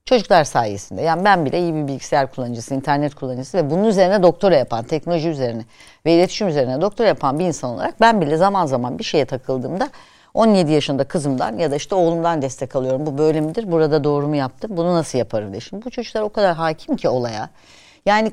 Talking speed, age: 205 wpm, 60-79